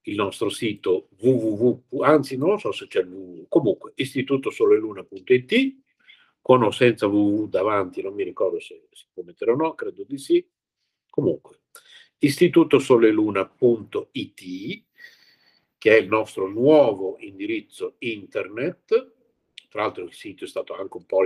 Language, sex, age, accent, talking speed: Italian, male, 50-69, native, 130 wpm